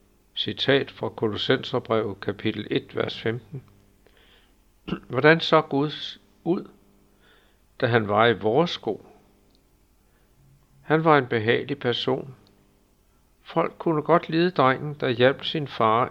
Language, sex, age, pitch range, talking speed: Danish, male, 60-79, 100-140 Hz, 115 wpm